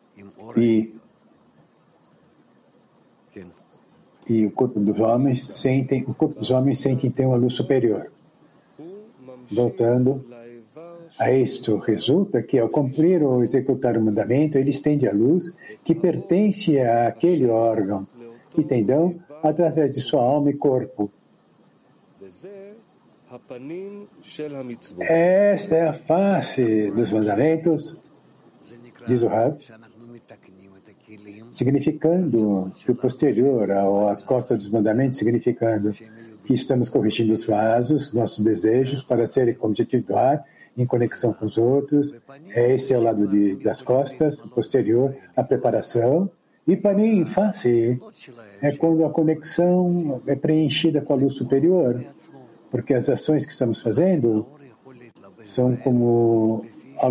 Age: 60-79